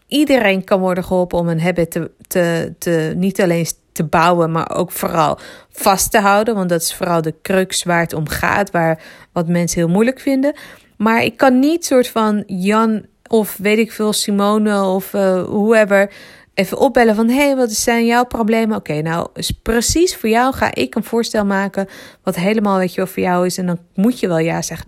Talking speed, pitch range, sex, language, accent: 210 wpm, 185-235 Hz, female, Dutch, Dutch